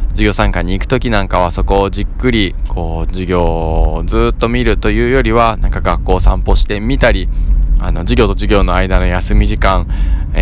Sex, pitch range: male, 80-105 Hz